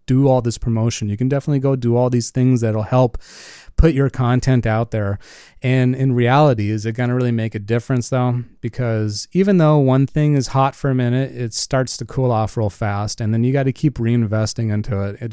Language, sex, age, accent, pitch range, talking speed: English, male, 30-49, American, 110-135 Hz, 225 wpm